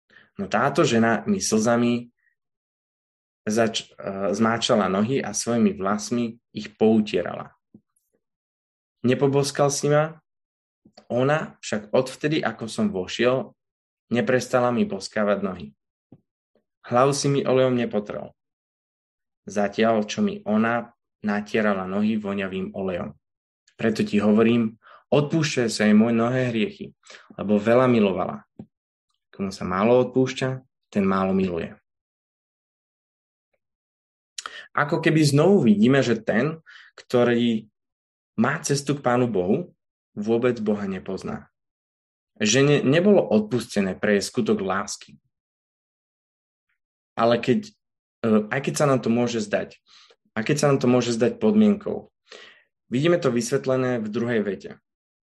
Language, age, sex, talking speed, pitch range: Slovak, 20-39, male, 115 wpm, 105-130 Hz